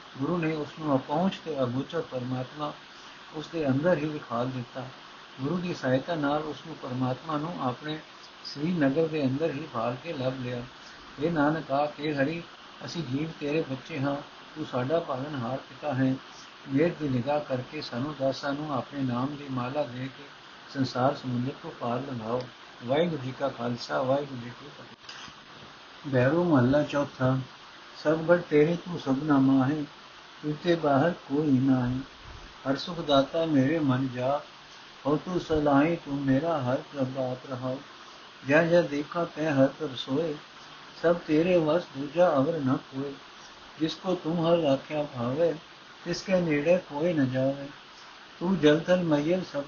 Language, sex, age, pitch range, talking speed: Punjabi, male, 60-79, 130-160 Hz, 155 wpm